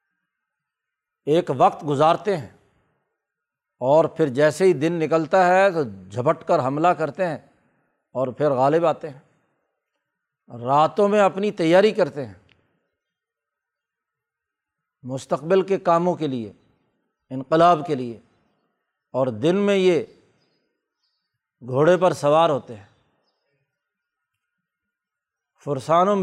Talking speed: 105 wpm